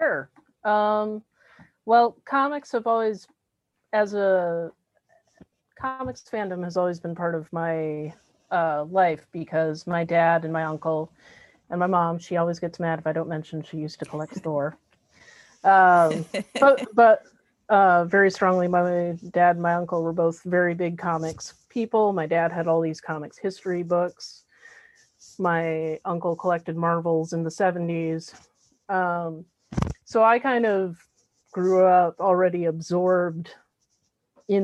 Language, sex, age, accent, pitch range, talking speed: English, female, 30-49, American, 165-195 Hz, 140 wpm